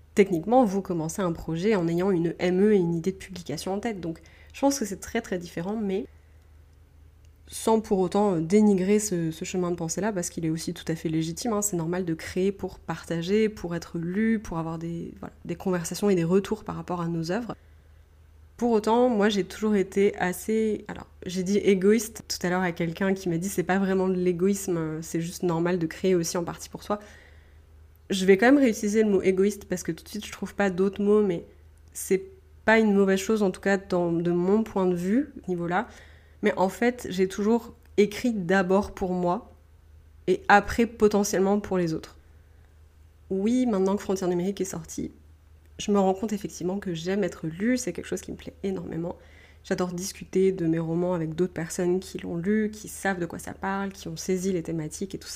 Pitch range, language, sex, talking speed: 165-200 Hz, French, female, 215 wpm